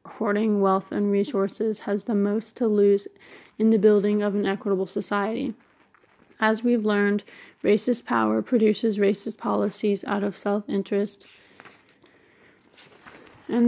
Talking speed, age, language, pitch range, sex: 125 wpm, 20-39, English, 195-220 Hz, female